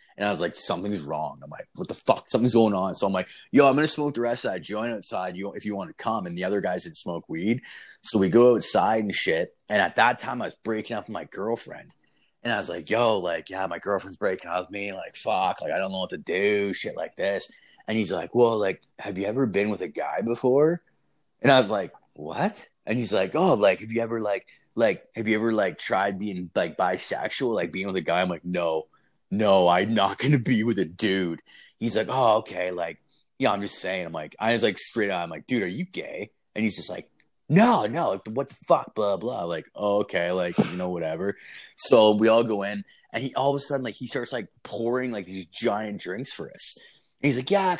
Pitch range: 95-125 Hz